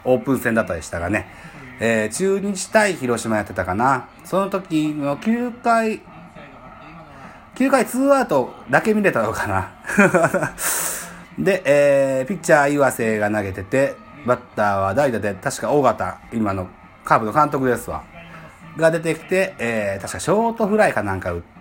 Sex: male